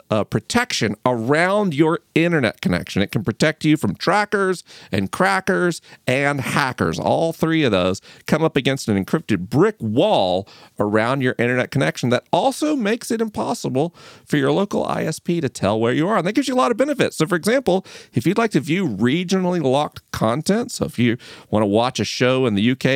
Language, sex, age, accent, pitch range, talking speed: English, male, 40-59, American, 110-160 Hz, 195 wpm